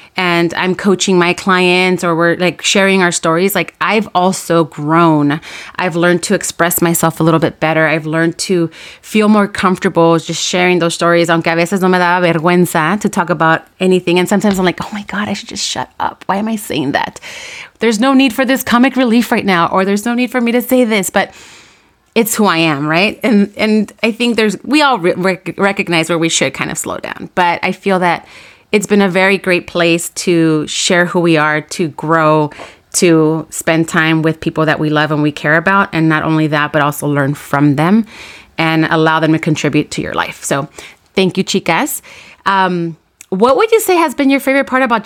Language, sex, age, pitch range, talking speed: English, female, 30-49, 165-200 Hz, 215 wpm